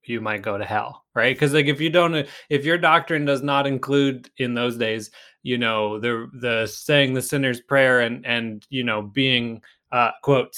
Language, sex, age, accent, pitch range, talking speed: English, male, 20-39, American, 110-140 Hz, 200 wpm